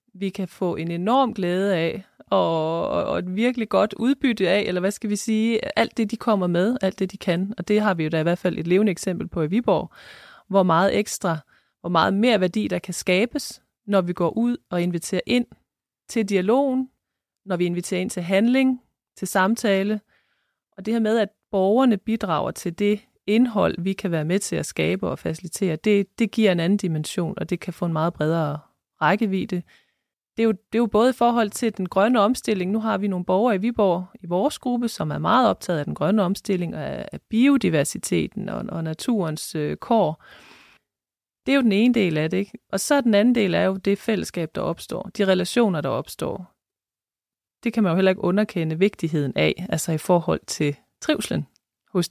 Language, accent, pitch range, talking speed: Danish, native, 175-225 Hz, 205 wpm